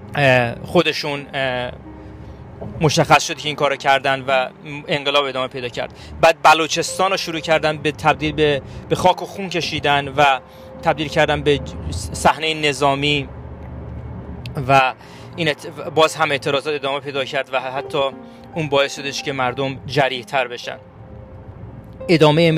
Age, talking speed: 30-49, 130 wpm